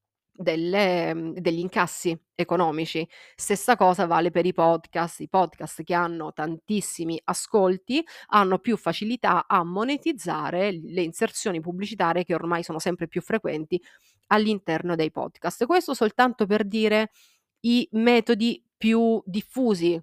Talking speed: 125 wpm